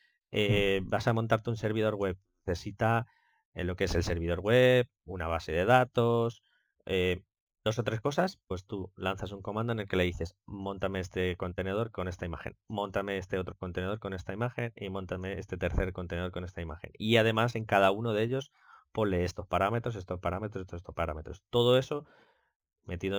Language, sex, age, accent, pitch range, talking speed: Spanish, male, 20-39, Spanish, 90-110 Hz, 190 wpm